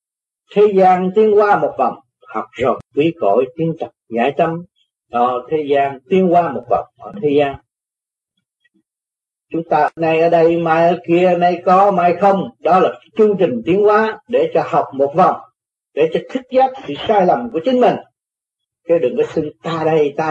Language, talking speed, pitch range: Vietnamese, 185 wpm, 140-210 Hz